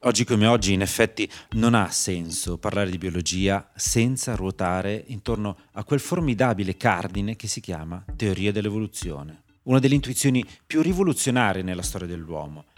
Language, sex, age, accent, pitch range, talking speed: Italian, male, 30-49, native, 95-120 Hz, 145 wpm